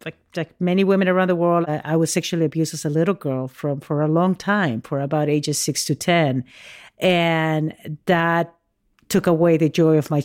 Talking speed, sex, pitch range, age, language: 205 wpm, female, 155-185 Hz, 50-69, English